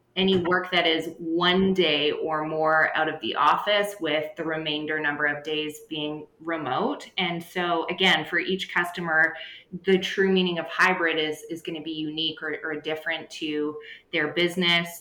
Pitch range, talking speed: 155-180 Hz, 170 wpm